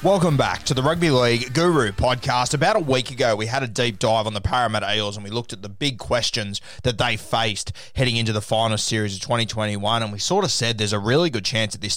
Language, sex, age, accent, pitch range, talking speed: English, male, 20-39, Australian, 105-125 Hz, 250 wpm